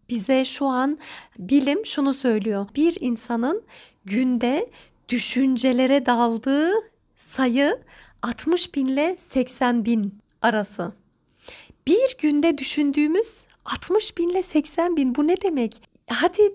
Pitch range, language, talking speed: 240-315 Hz, Turkish, 95 wpm